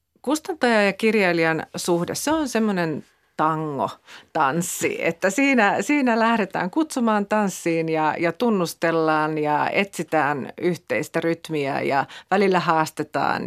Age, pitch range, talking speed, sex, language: 40-59, 155-190 Hz, 105 wpm, female, Finnish